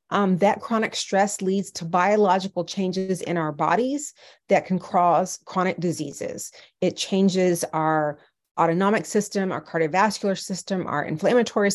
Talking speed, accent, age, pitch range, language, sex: 135 wpm, American, 30-49, 170-210 Hz, English, female